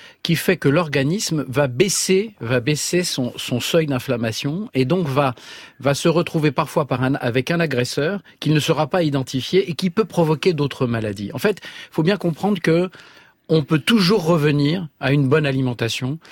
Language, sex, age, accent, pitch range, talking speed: French, male, 40-59, French, 125-165 Hz, 180 wpm